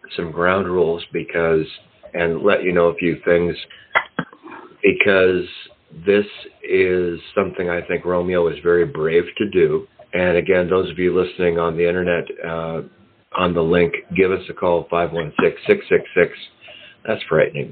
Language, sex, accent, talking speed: English, male, American, 145 wpm